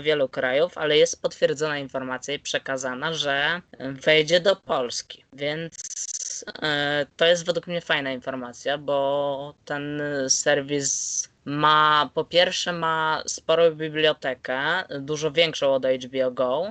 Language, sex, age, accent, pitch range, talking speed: Polish, female, 20-39, native, 140-165 Hz, 120 wpm